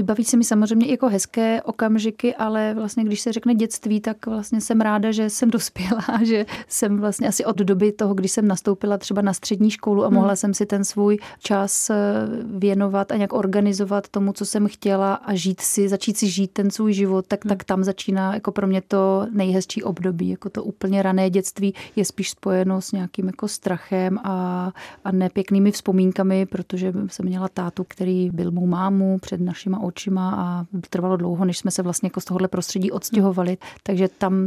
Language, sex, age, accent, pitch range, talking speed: Czech, female, 30-49, native, 190-210 Hz, 190 wpm